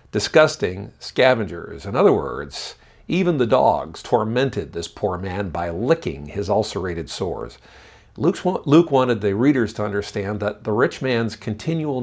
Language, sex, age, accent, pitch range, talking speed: English, male, 50-69, American, 100-140 Hz, 140 wpm